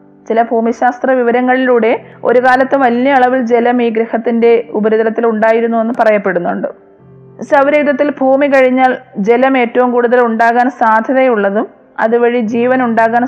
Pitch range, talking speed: 230-265 Hz, 115 wpm